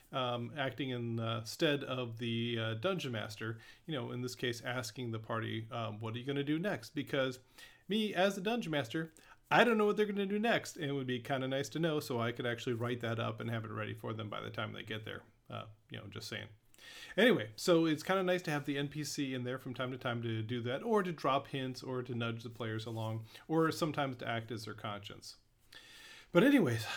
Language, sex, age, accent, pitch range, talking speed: English, male, 40-59, American, 115-155 Hz, 250 wpm